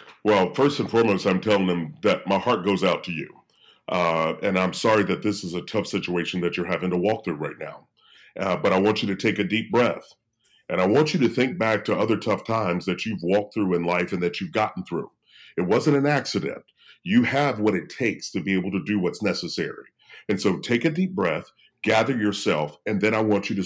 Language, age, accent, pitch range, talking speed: English, 40-59, American, 95-125 Hz, 240 wpm